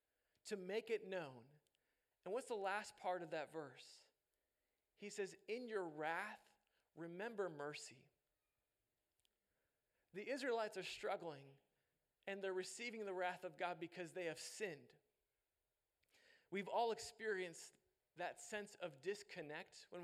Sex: male